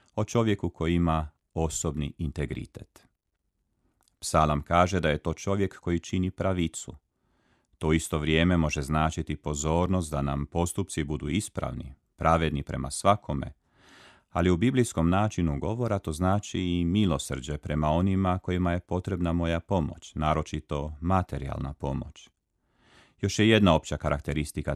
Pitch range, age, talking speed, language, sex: 75-90 Hz, 40-59, 130 wpm, Croatian, male